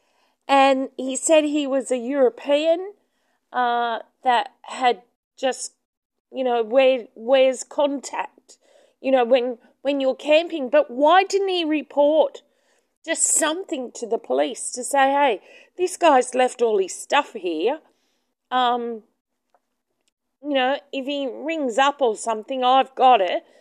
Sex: female